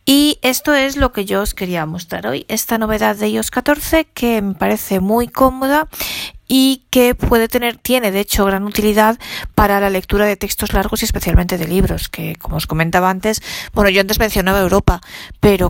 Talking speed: 190 wpm